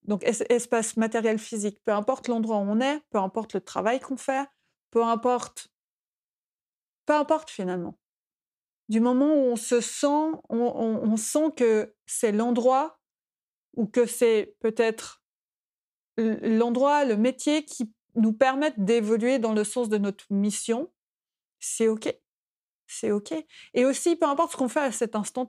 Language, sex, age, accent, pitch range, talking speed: French, female, 30-49, French, 215-255 Hz, 155 wpm